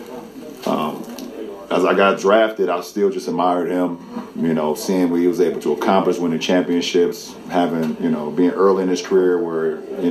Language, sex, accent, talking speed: English, male, American, 185 wpm